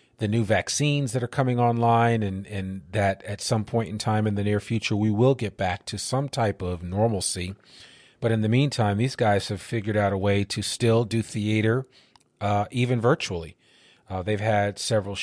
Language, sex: English, male